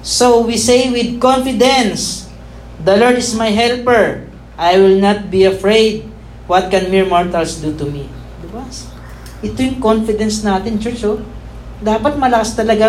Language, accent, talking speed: Filipino, native, 145 wpm